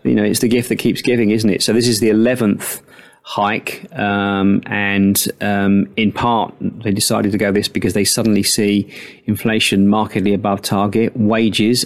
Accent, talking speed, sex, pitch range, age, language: British, 175 wpm, male, 100-110 Hz, 30-49, English